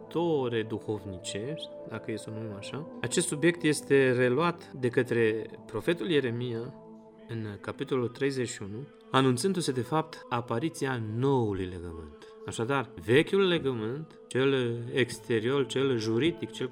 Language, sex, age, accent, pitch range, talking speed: Romanian, male, 30-49, native, 110-140 Hz, 110 wpm